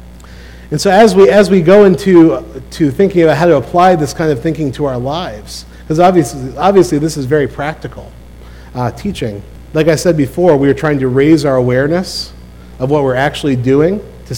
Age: 40-59